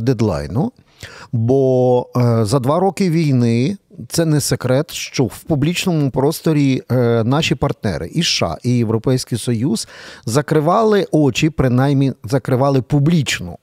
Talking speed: 110 wpm